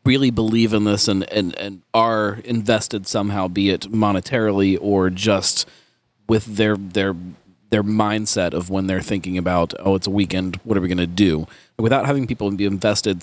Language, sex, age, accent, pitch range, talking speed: English, male, 30-49, American, 95-115 Hz, 175 wpm